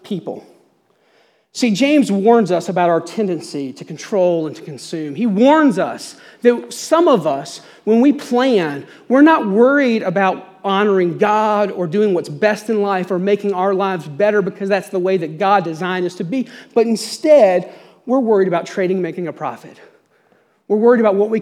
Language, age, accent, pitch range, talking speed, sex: English, 40-59, American, 180-240 Hz, 180 wpm, male